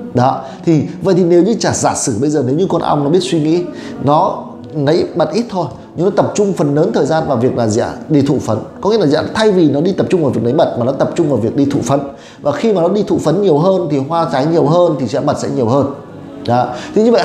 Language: Vietnamese